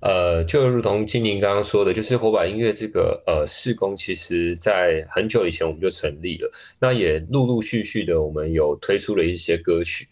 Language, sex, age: Chinese, male, 20-39